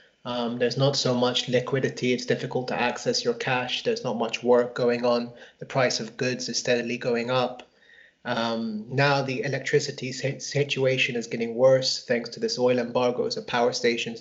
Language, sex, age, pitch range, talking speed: English, male, 30-49, 120-135 Hz, 175 wpm